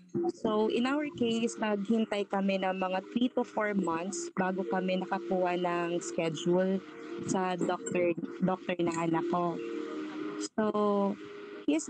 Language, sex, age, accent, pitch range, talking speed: Filipino, female, 20-39, native, 180-245 Hz, 120 wpm